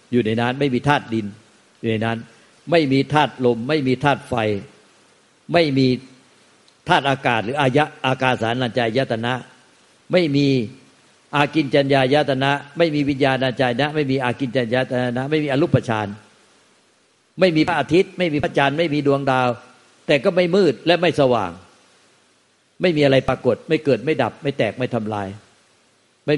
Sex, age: male, 60-79